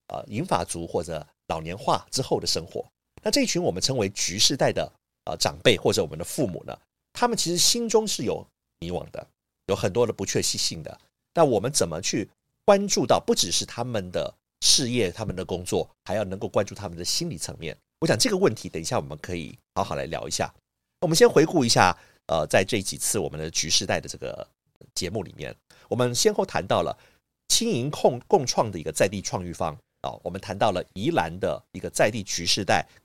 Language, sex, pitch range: Chinese, male, 90-150 Hz